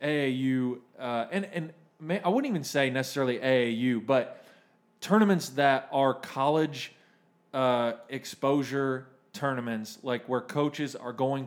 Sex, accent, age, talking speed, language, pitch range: male, American, 20-39, 120 wpm, English, 115-140 Hz